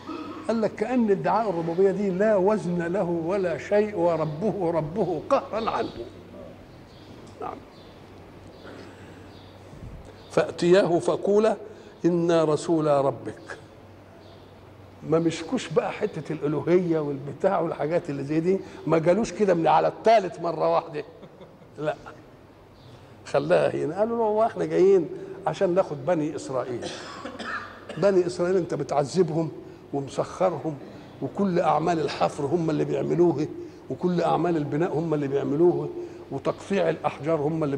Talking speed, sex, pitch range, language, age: 110 wpm, male, 140-190 Hz, Arabic, 60-79